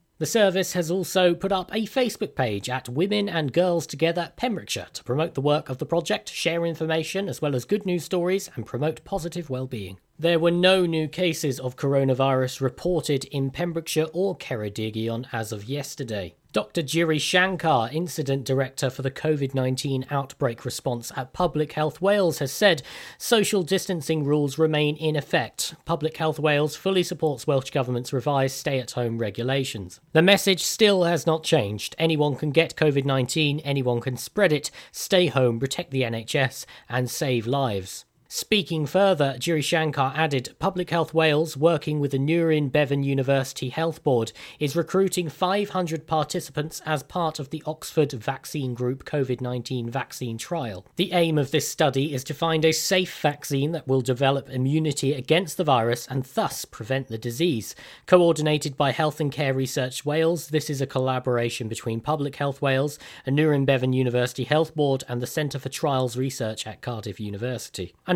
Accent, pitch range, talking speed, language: British, 130-165 Hz, 160 wpm, English